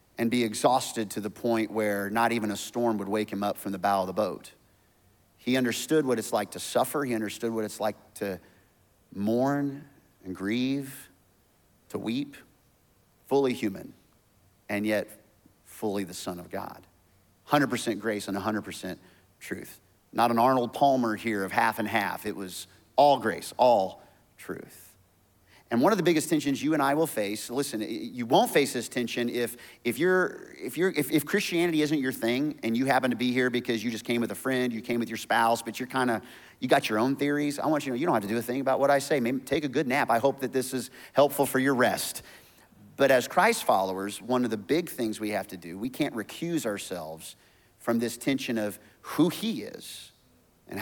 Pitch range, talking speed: 100-135 Hz, 210 wpm